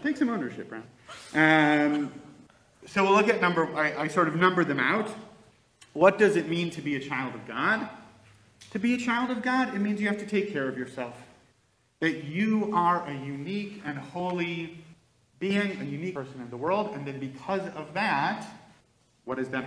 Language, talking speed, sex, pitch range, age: English, 195 wpm, male, 130-190 Hz, 30-49